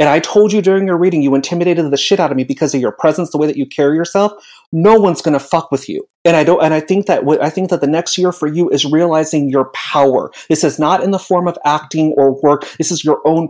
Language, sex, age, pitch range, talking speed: English, male, 30-49, 145-170 Hz, 290 wpm